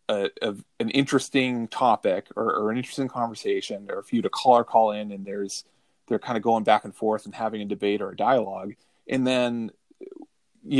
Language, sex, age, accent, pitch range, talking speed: English, male, 30-49, American, 105-125 Hz, 210 wpm